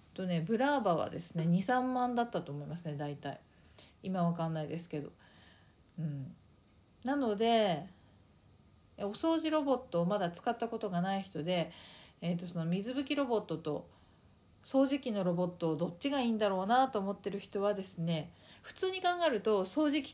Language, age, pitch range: Japanese, 40-59, 165-250 Hz